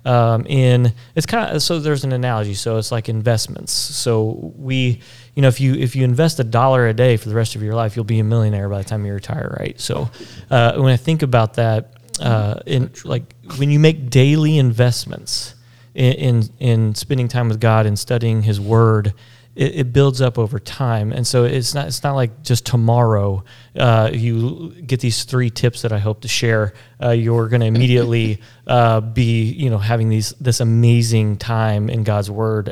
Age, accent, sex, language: 30-49, American, male, English